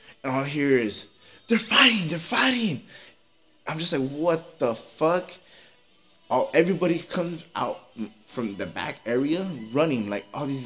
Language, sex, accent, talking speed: English, male, American, 150 wpm